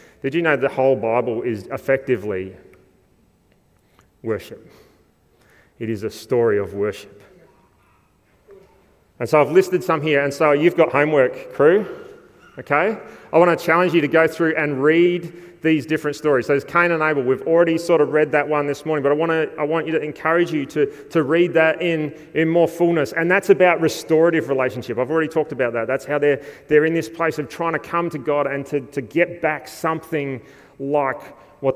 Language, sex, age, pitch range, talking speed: English, male, 30-49, 125-160 Hz, 195 wpm